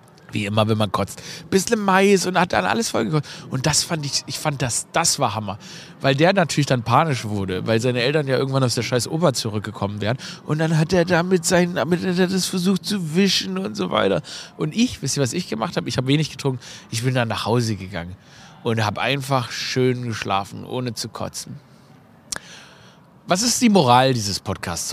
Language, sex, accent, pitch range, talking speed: German, male, German, 115-170 Hz, 205 wpm